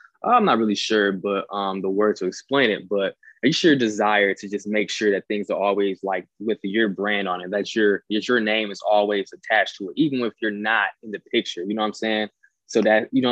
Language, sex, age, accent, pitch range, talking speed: English, male, 20-39, American, 100-115 Hz, 250 wpm